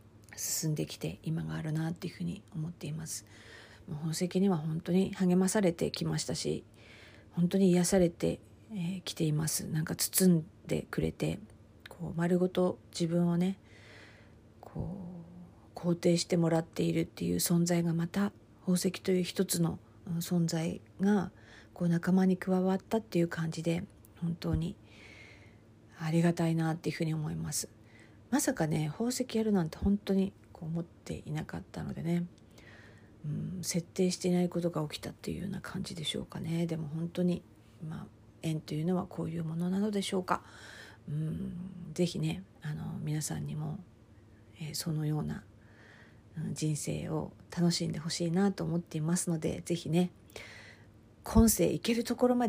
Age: 50-69